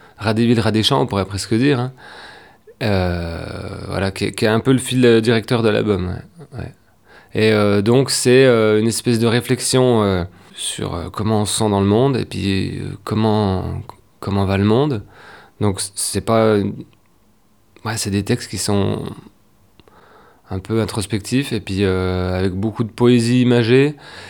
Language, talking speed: French, 170 wpm